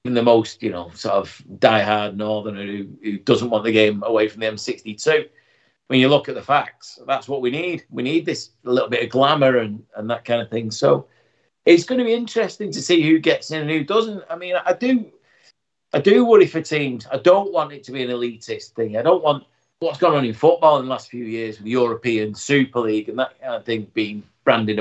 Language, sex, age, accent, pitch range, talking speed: English, male, 40-59, British, 115-155 Hz, 240 wpm